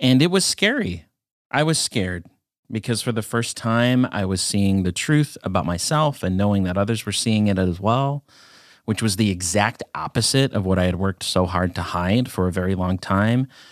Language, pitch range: English, 95-125 Hz